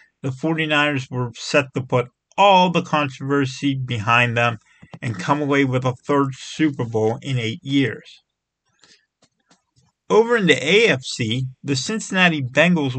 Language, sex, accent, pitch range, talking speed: English, male, American, 130-160 Hz, 135 wpm